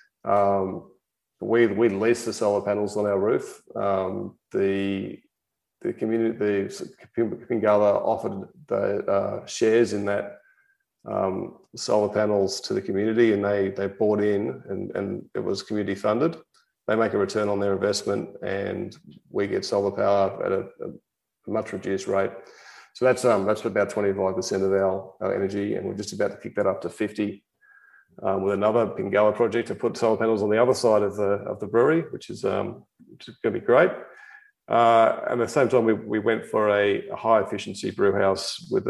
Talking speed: 185 wpm